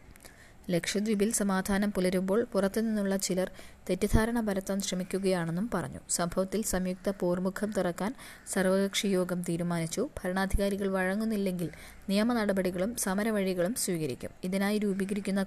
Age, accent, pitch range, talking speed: 20-39, native, 180-205 Hz, 85 wpm